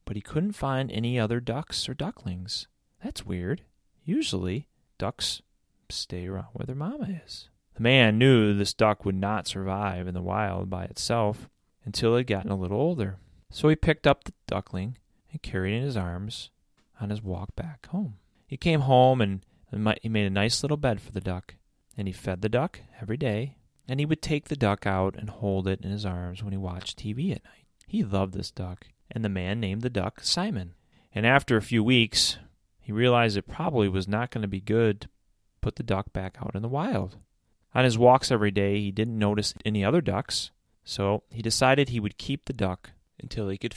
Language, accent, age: English, American, 30-49